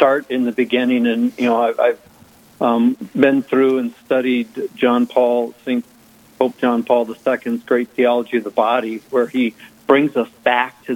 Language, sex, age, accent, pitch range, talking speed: English, male, 50-69, American, 120-155 Hz, 175 wpm